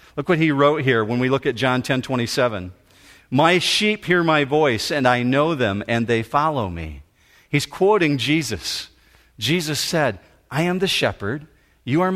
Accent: American